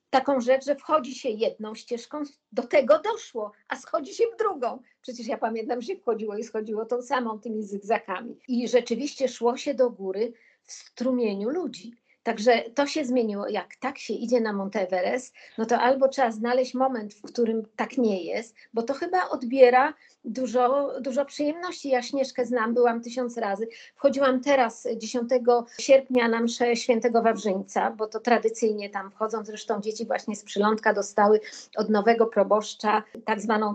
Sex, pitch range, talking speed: female, 225-270 Hz, 165 wpm